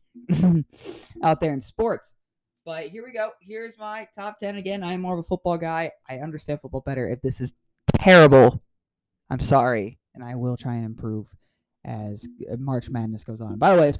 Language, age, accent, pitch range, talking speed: English, 20-39, American, 125-175 Hz, 195 wpm